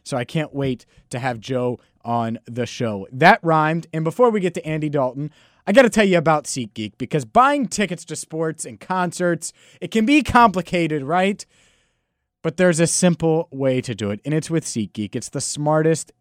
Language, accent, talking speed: English, American, 195 wpm